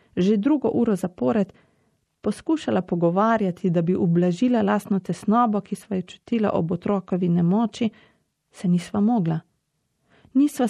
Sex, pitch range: female, 175-215 Hz